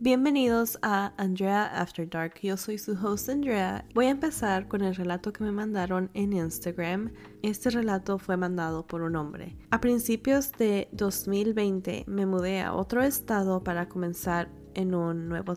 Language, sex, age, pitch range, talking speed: Spanish, female, 20-39, 180-225 Hz, 160 wpm